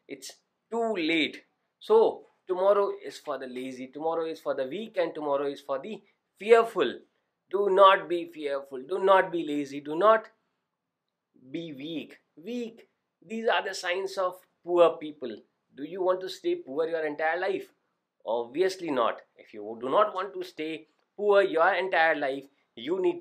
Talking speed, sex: 165 wpm, male